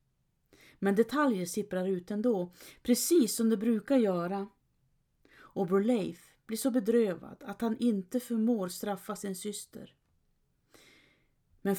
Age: 30-49